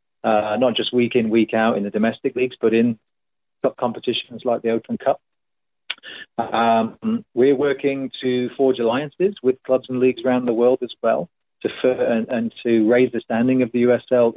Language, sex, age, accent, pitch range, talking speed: English, male, 40-59, British, 110-130 Hz, 185 wpm